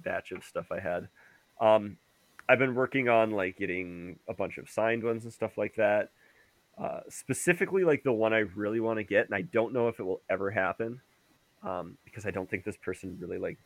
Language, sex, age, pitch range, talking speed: English, male, 20-39, 95-120 Hz, 215 wpm